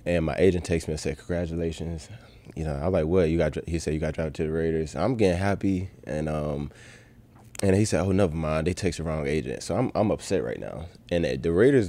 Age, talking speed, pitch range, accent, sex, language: 20-39, 245 wpm, 80-95 Hz, American, male, English